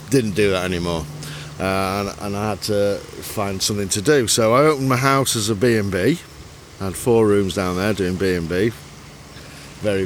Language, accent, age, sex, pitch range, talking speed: English, British, 50-69, male, 95-130 Hz, 185 wpm